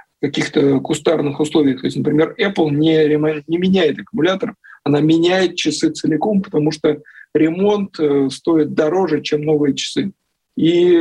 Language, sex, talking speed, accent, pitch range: Russian, male, 135 wpm, native, 145-170 Hz